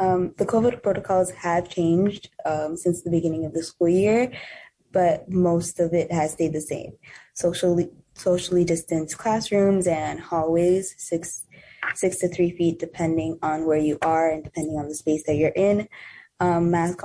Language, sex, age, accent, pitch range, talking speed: English, female, 20-39, American, 155-175 Hz, 170 wpm